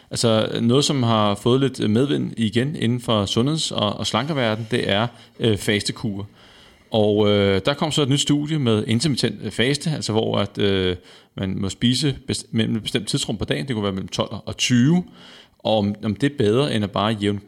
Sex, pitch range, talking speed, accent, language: male, 105-125 Hz, 185 wpm, native, Danish